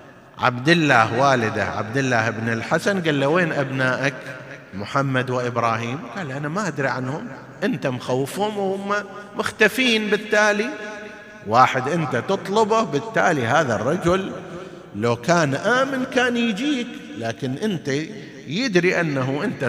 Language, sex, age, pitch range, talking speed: Arabic, male, 50-69, 135-210 Hz, 120 wpm